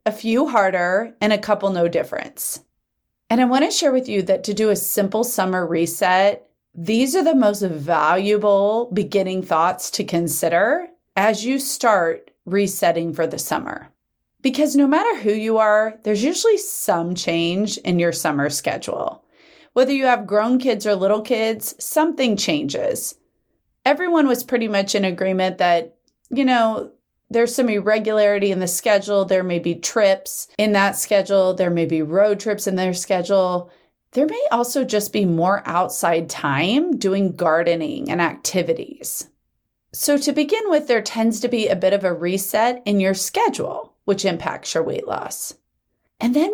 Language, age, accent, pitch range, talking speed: English, 30-49, American, 185-255 Hz, 160 wpm